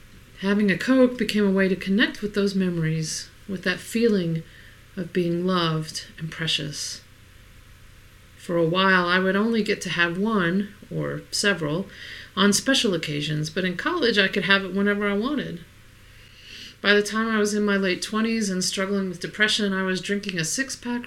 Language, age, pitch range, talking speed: English, 40-59, 150-205 Hz, 175 wpm